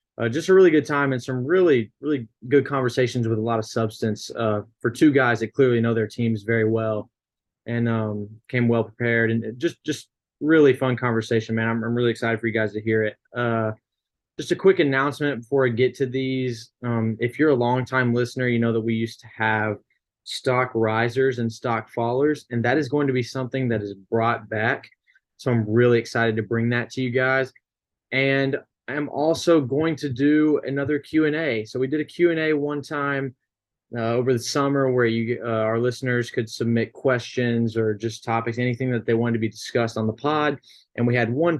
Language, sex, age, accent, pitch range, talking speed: English, male, 20-39, American, 115-130 Hz, 210 wpm